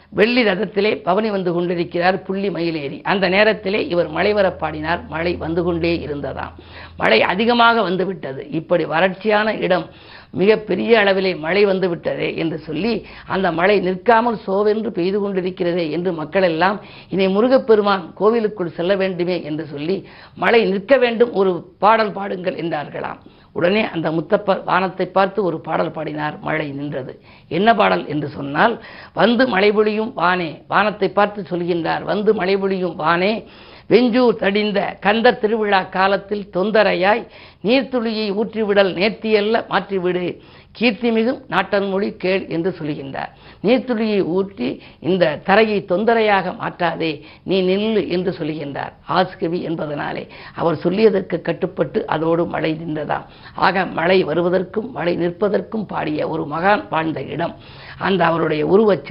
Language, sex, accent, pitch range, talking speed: Tamil, female, native, 175-210 Hz, 125 wpm